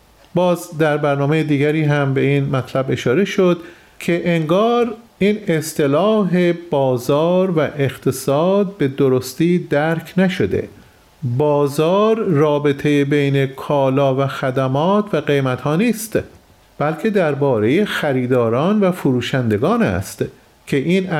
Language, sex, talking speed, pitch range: Persian, male, 110 wpm, 140-180 Hz